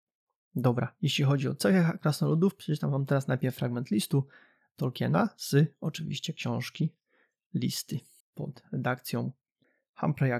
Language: Polish